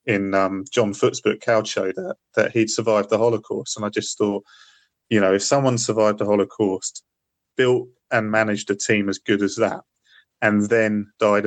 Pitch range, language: 100-115 Hz, English